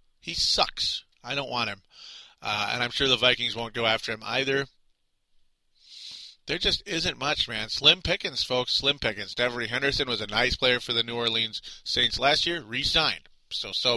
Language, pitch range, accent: English, 110-140 Hz, American